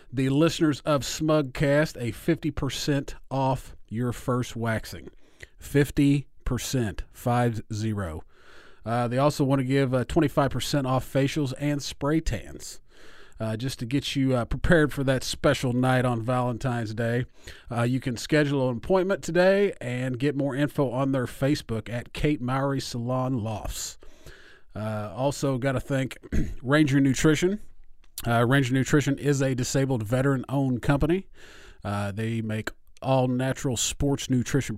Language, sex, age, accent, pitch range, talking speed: English, male, 40-59, American, 110-140 Hz, 135 wpm